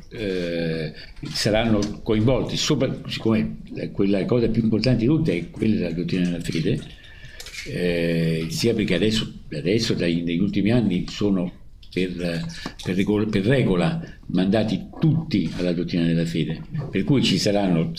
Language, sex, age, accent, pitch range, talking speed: Italian, male, 60-79, native, 90-130 Hz, 125 wpm